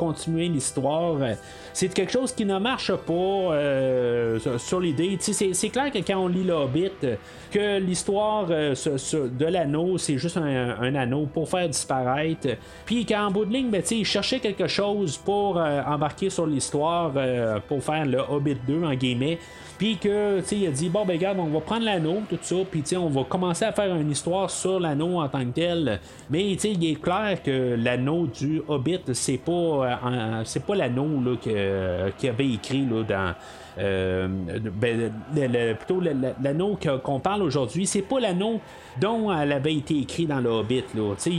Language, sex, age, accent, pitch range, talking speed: French, male, 30-49, Canadian, 130-185 Hz, 195 wpm